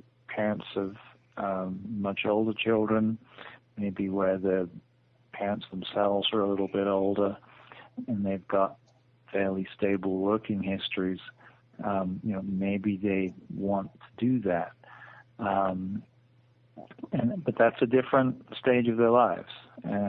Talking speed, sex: 130 wpm, male